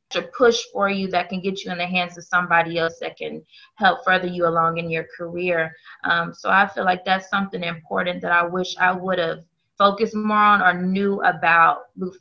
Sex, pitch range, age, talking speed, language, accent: female, 180-200 Hz, 20-39, 210 wpm, English, American